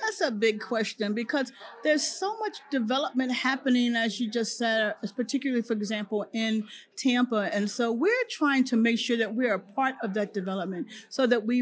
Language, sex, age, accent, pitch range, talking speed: English, female, 40-59, American, 205-245 Hz, 190 wpm